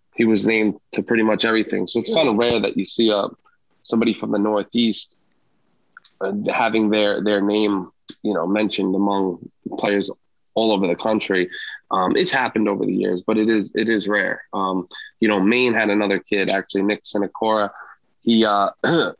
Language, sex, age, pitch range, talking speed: English, male, 20-39, 95-110 Hz, 180 wpm